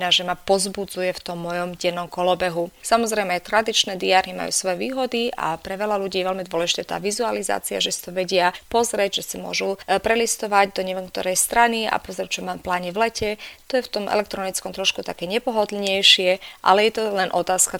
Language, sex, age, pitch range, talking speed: Slovak, female, 30-49, 180-210 Hz, 190 wpm